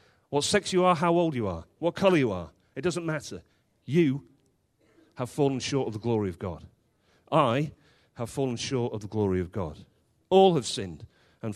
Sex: male